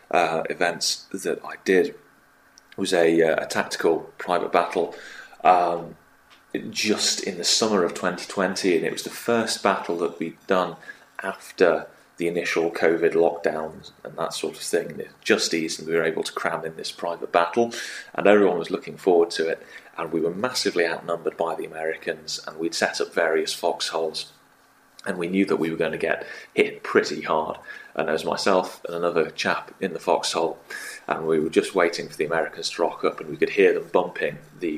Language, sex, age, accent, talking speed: English, male, 30-49, British, 195 wpm